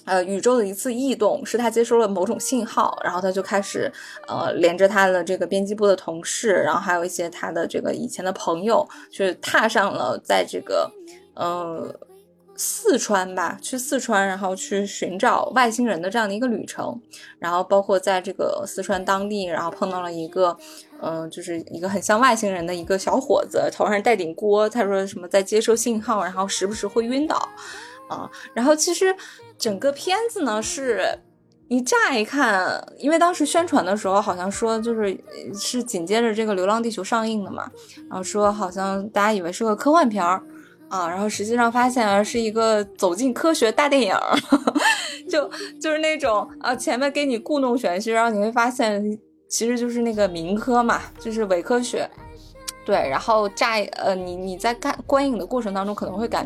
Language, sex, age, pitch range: Chinese, female, 20-39, 195-255 Hz